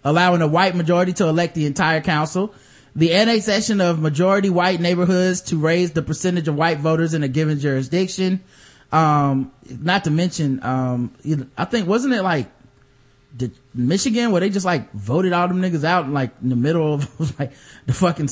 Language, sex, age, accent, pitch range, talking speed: English, male, 20-39, American, 145-190 Hz, 190 wpm